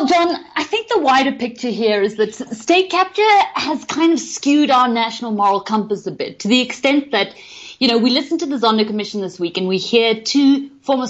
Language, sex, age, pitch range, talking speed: English, female, 30-49, 185-260 Hz, 220 wpm